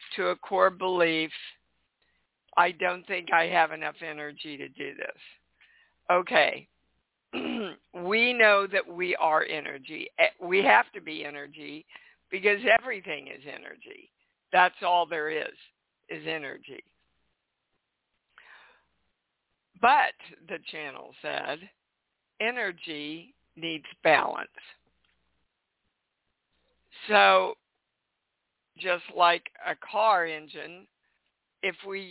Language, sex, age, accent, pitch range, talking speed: English, female, 60-79, American, 155-195 Hz, 95 wpm